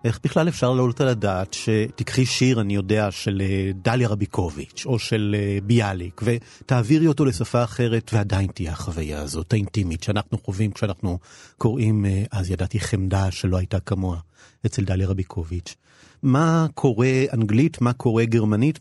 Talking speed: 140 wpm